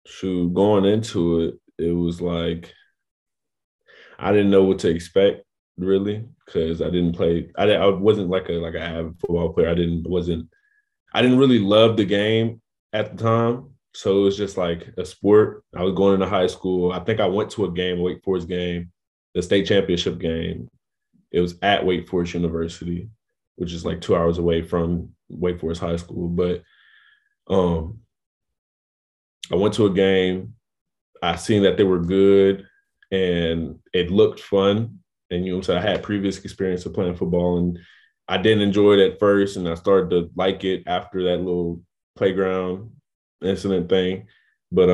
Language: English